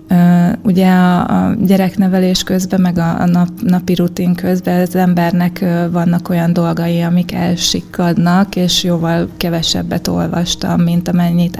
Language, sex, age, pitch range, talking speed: Hungarian, female, 20-39, 170-185 Hz, 130 wpm